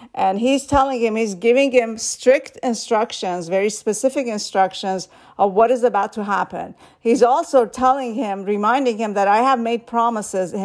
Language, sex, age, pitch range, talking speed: English, female, 50-69, 195-230 Hz, 165 wpm